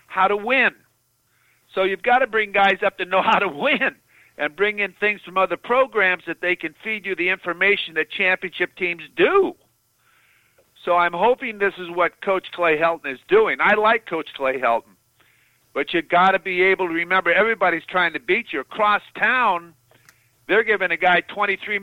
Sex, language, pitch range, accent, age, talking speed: male, English, 170-220 Hz, American, 50-69, 190 wpm